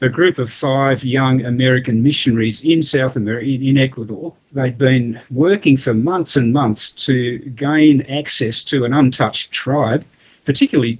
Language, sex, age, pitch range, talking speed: English, male, 50-69, 120-140 Hz, 145 wpm